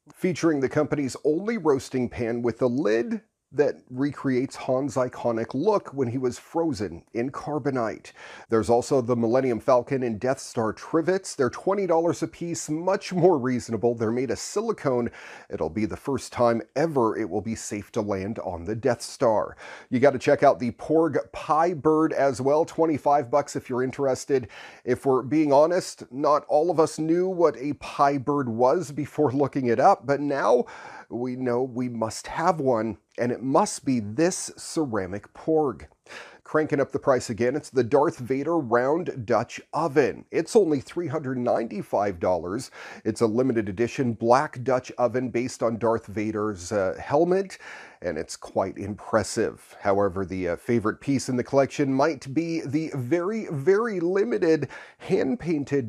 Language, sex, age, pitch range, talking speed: English, male, 40-59, 120-155 Hz, 160 wpm